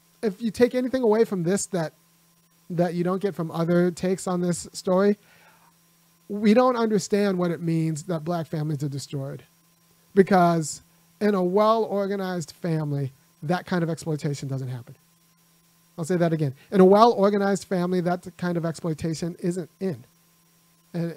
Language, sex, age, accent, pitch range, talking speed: English, male, 40-59, American, 160-180 Hz, 160 wpm